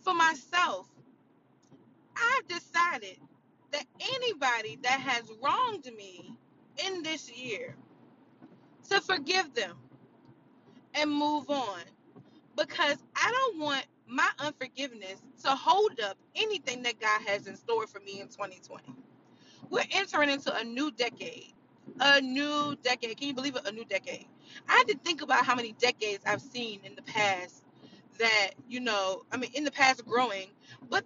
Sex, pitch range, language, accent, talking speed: female, 210-295 Hz, English, American, 150 wpm